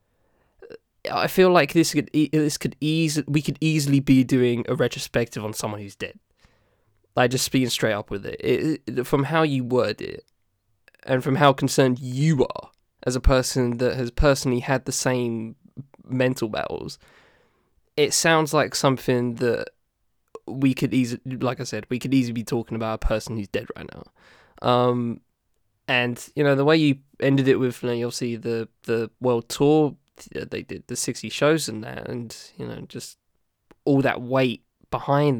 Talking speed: 180 wpm